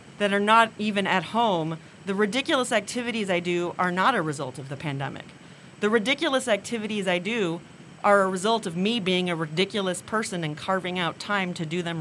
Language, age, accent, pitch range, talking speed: English, 40-59, American, 165-225 Hz, 195 wpm